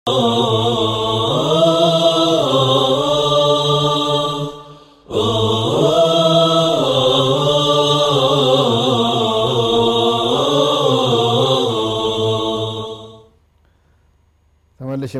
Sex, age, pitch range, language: male, 30-49, 110-145 Hz, Amharic